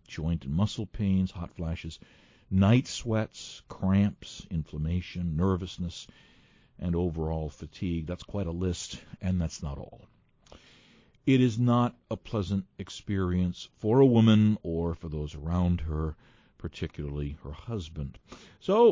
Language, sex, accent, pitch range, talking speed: English, male, American, 85-120 Hz, 125 wpm